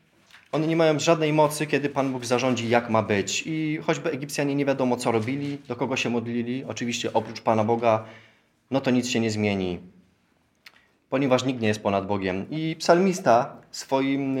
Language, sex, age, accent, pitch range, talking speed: Polish, male, 20-39, native, 115-150 Hz, 180 wpm